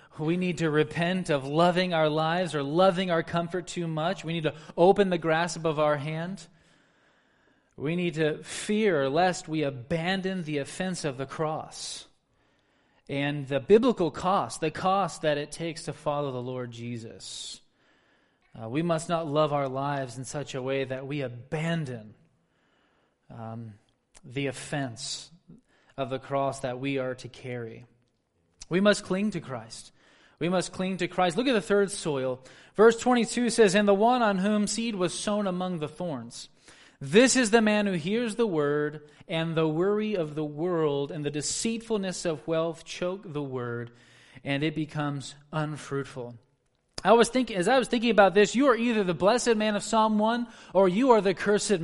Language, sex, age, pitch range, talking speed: English, male, 20-39, 140-200 Hz, 175 wpm